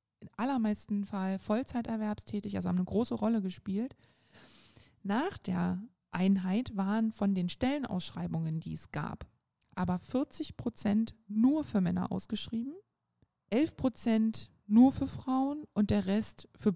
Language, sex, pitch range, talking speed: German, female, 180-225 Hz, 130 wpm